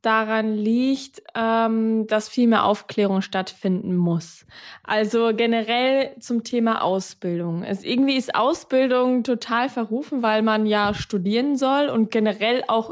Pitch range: 200-235 Hz